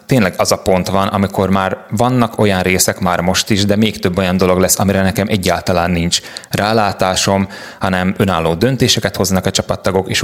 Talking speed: 180 wpm